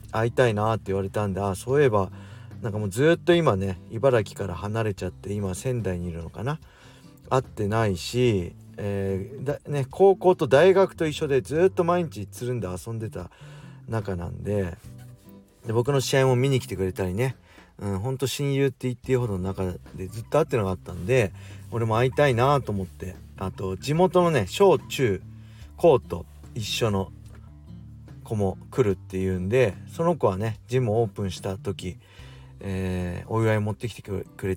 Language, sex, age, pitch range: Japanese, male, 40-59, 95-130 Hz